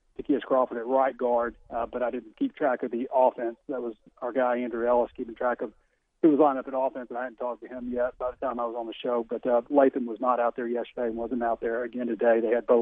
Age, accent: 40-59, American